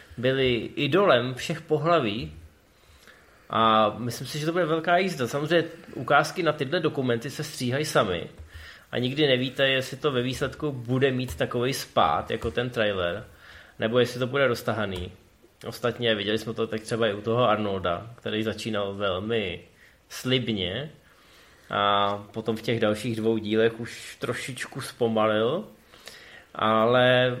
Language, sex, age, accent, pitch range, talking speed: Czech, male, 20-39, native, 110-145 Hz, 140 wpm